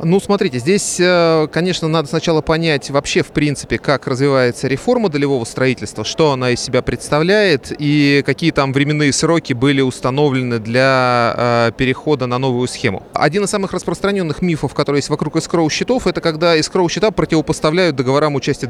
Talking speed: 155 wpm